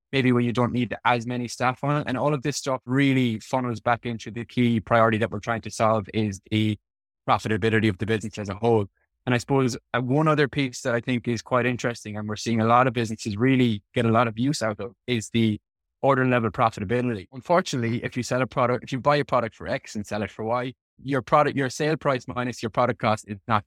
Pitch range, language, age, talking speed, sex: 110-130 Hz, English, 20-39, 245 wpm, male